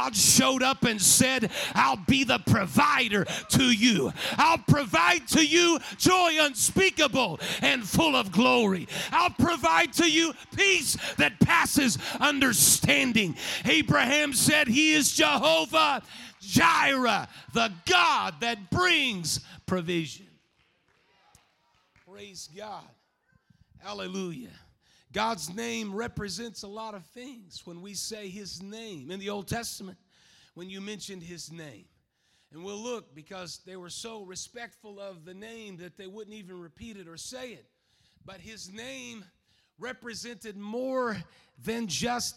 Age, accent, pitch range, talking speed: 40-59, American, 195-250 Hz, 130 wpm